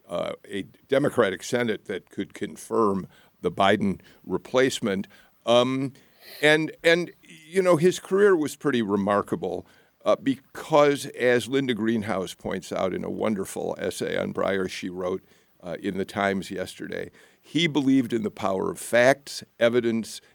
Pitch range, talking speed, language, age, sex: 100-130 Hz, 140 wpm, English, 50-69, male